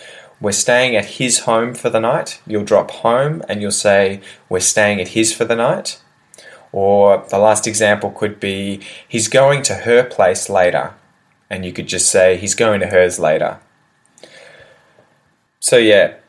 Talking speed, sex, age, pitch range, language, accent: 165 wpm, male, 10-29, 100-115 Hz, English, Australian